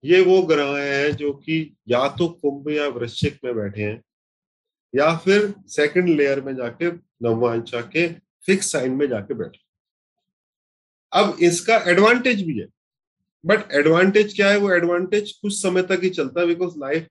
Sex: male